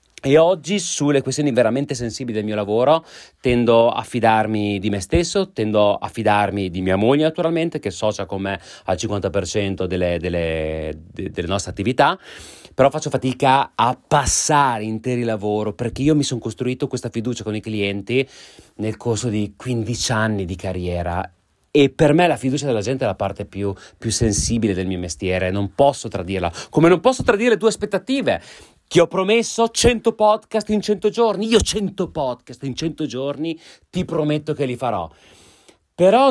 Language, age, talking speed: Italian, 30-49, 170 wpm